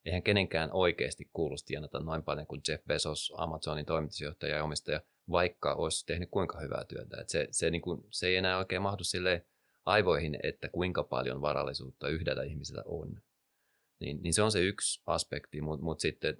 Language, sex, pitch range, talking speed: Finnish, male, 80-95 Hz, 175 wpm